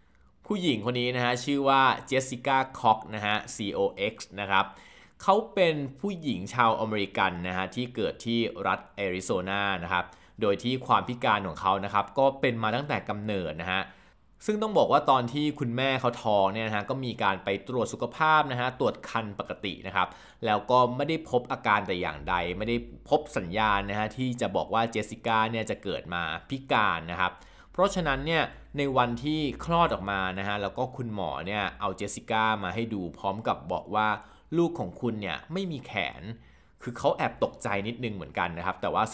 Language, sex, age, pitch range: Thai, male, 20-39, 100-130 Hz